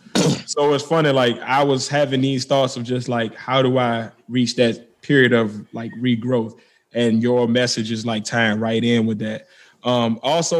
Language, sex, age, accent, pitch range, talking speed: English, male, 20-39, American, 115-140 Hz, 185 wpm